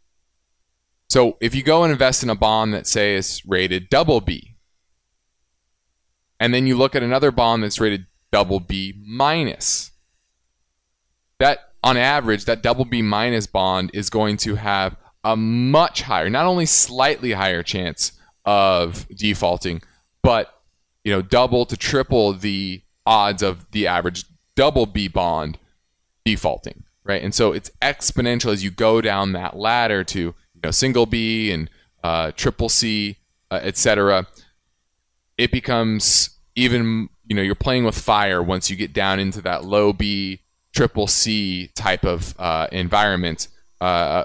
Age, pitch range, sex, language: 20-39, 90-115 Hz, male, English